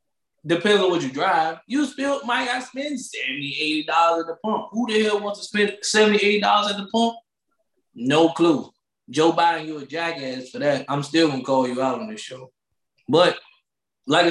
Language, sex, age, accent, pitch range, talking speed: English, male, 20-39, American, 155-205 Hz, 195 wpm